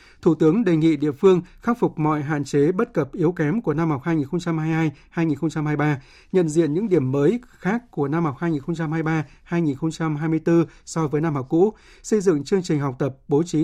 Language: Vietnamese